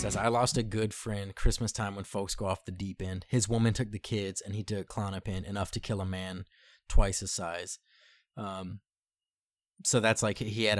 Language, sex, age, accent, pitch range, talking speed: English, male, 20-39, American, 95-110 Hz, 210 wpm